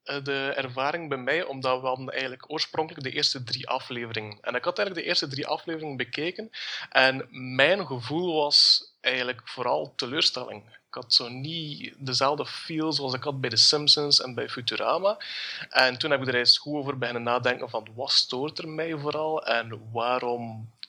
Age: 30-49